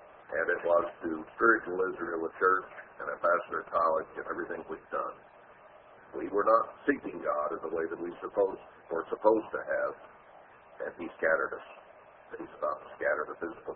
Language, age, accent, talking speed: English, 50-69, American, 190 wpm